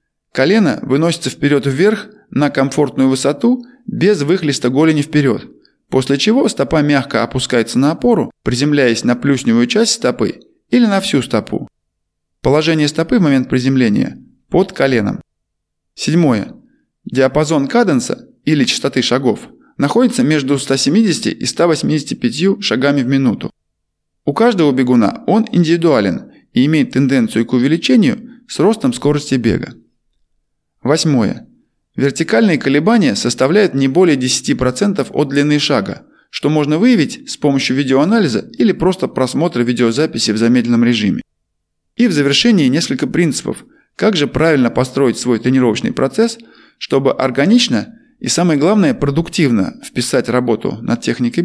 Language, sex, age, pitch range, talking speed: Russian, male, 20-39, 125-200 Hz, 125 wpm